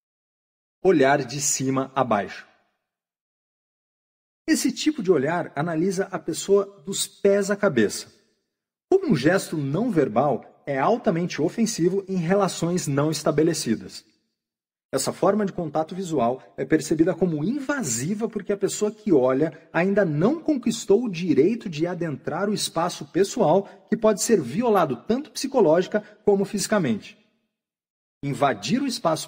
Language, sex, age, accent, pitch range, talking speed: Portuguese, male, 40-59, Brazilian, 165-210 Hz, 130 wpm